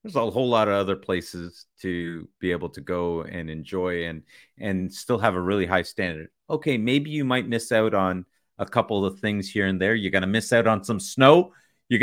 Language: English